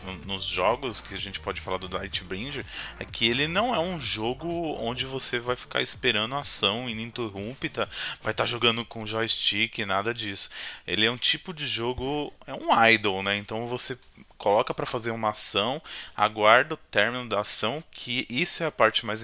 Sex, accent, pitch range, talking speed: male, Brazilian, 105-140 Hz, 195 wpm